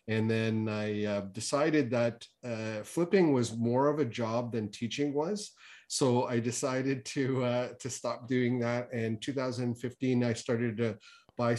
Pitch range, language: 105-120 Hz, English